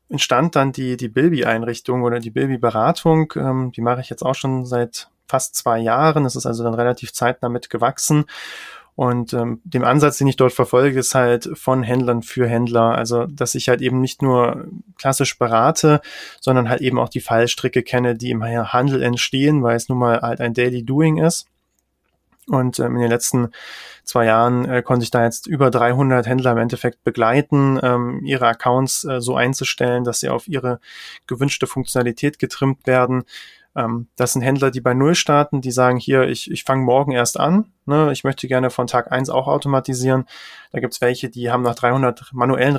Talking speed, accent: 180 wpm, German